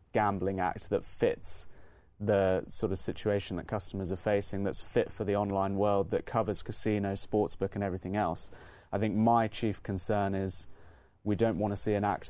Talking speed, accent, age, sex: 180 wpm, British, 20-39, male